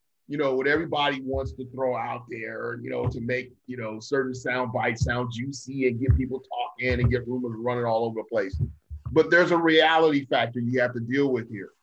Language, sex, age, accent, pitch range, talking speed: English, male, 40-59, American, 125-160 Hz, 220 wpm